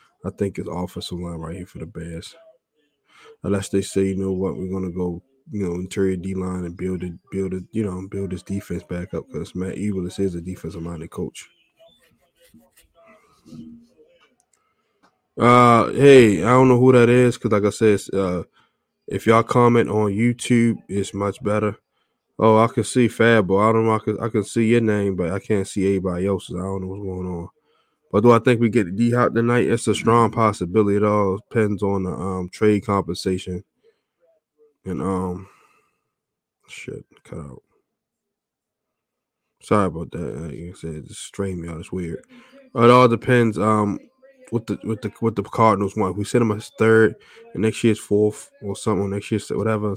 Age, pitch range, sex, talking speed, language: 20-39, 95-115 Hz, male, 195 wpm, English